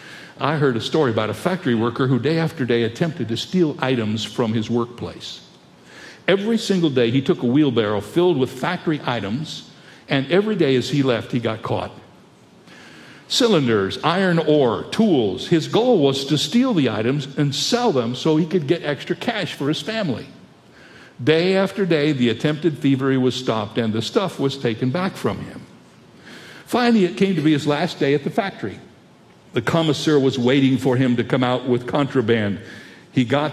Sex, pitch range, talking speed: male, 125-180 Hz, 185 wpm